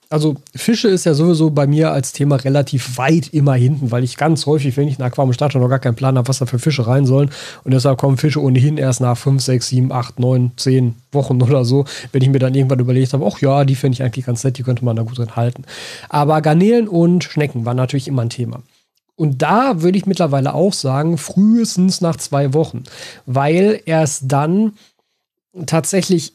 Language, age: German, 40-59